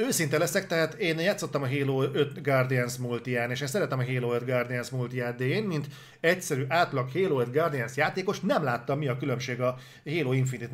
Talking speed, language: 195 wpm, Hungarian